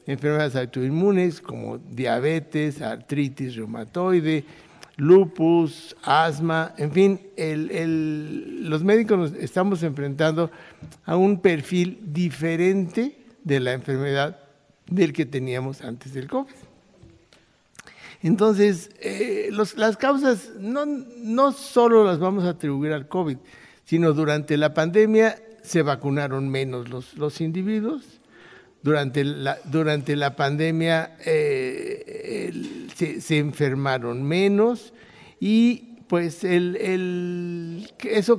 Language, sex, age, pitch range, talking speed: Spanish, male, 60-79, 150-210 Hz, 105 wpm